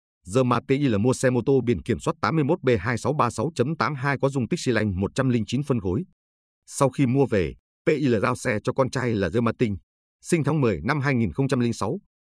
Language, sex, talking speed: Vietnamese, male, 185 wpm